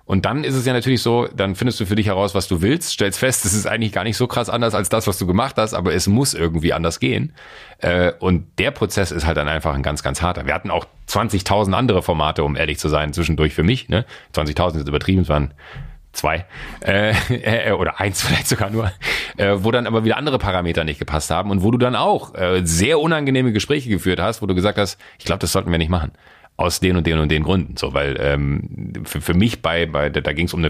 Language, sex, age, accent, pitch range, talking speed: German, male, 40-59, German, 85-115 Hz, 240 wpm